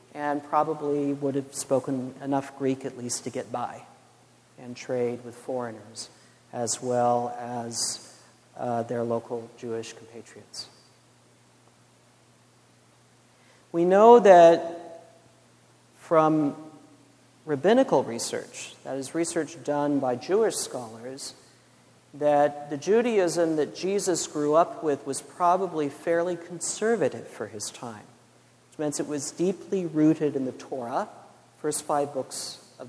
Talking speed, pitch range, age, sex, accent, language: 115 wpm, 130-165 Hz, 50-69, male, American, English